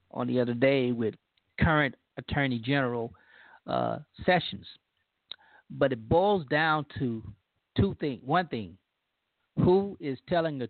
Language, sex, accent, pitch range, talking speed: English, male, American, 125-165 Hz, 130 wpm